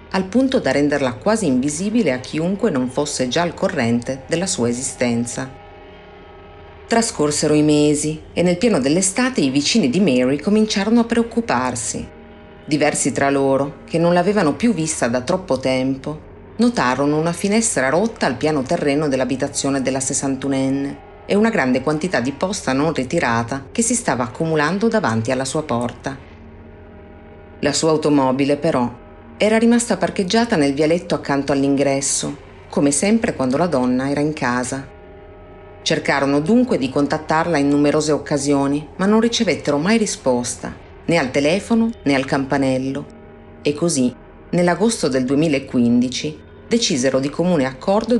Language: Italian